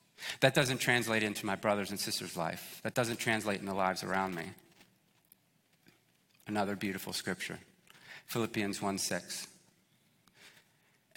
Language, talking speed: English, 120 wpm